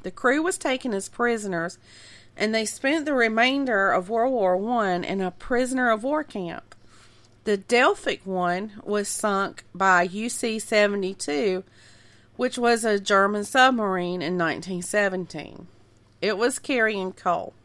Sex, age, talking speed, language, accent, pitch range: female, 40-59, 120 wpm, English, American, 175-225 Hz